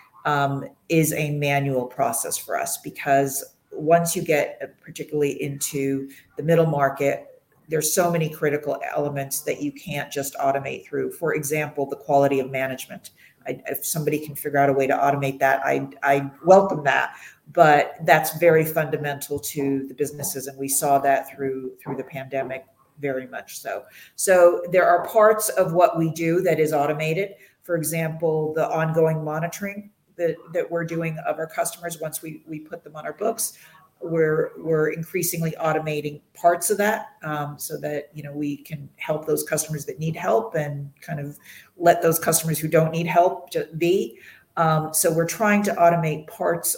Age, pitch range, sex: 40-59, 145-170 Hz, female